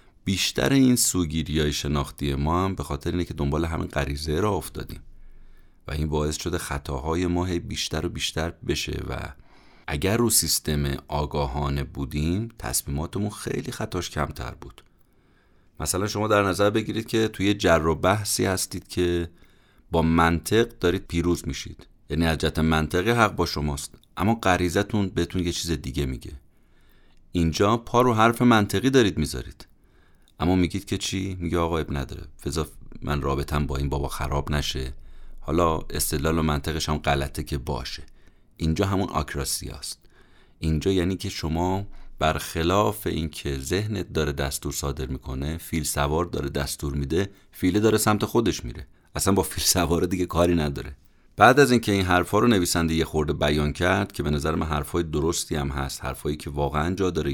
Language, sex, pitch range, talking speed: Persian, male, 75-95 Hz, 155 wpm